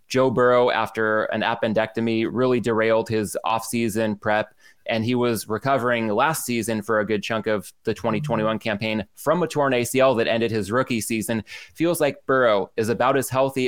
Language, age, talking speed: English, 20-39, 175 wpm